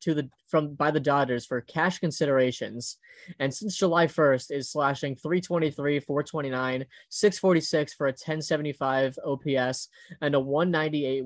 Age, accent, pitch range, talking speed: 20-39, American, 130-160 Hz, 135 wpm